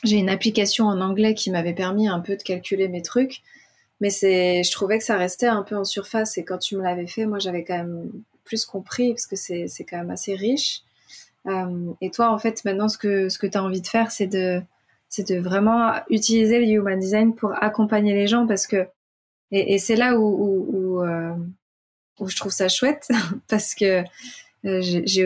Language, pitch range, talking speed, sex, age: French, 185-215 Hz, 210 wpm, female, 20-39